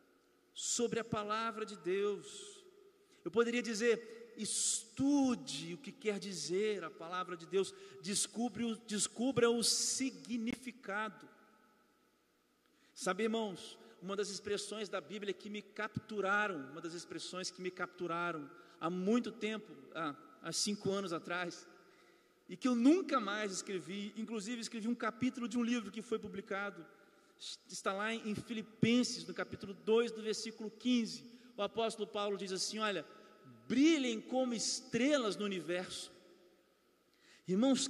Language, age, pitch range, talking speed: Portuguese, 40-59, 205-265 Hz, 130 wpm